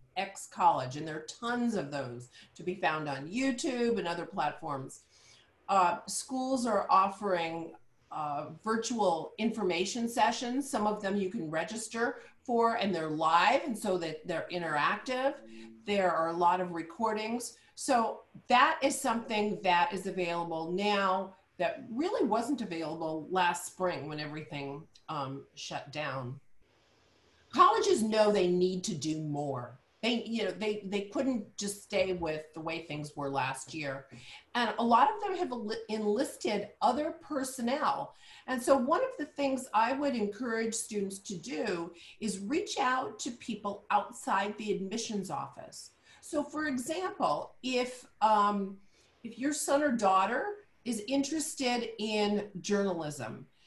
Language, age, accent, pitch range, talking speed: English, 40-59, American, 170-240 Hz, 145 wpm